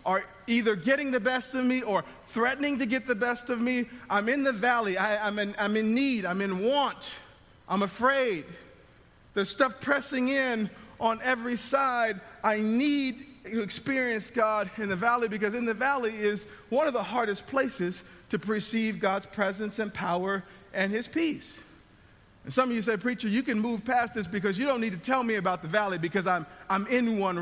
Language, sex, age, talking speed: English, male, 40-59, 195 wpm